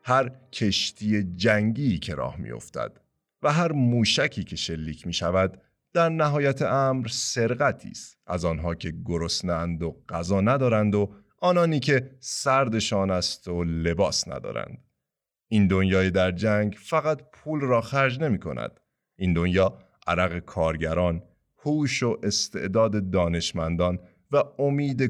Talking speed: 125 wpm